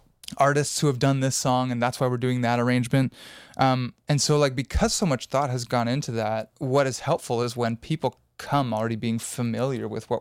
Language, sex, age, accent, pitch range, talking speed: English, male, 20-39, American, 115-140 Hz, 215 wpm